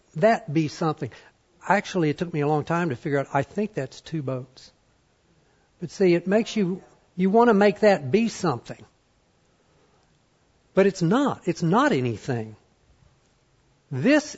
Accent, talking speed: American, 155 wpm